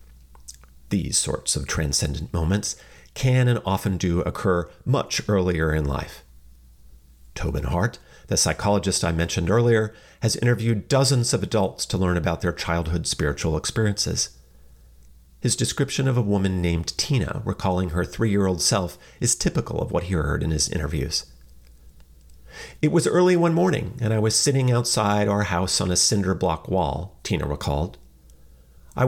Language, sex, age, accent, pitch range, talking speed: English, male, 50-69, American, 70-110 Hz, 150 wpm